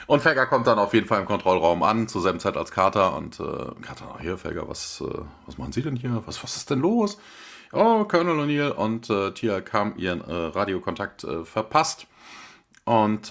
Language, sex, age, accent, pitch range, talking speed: German, male, 40-59, German, 105-145 Hz, 205 wpm